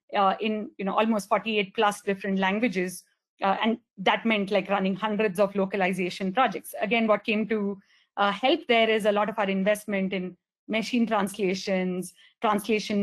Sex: female